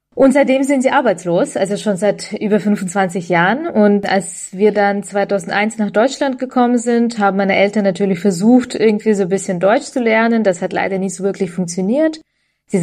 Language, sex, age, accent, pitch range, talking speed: German, female, 20-39, German, 185-230 Hz, 185 wpm